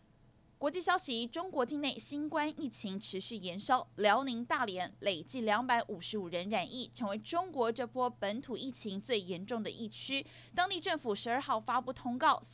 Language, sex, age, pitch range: Chinese, female, 30-49, 210-290 Hz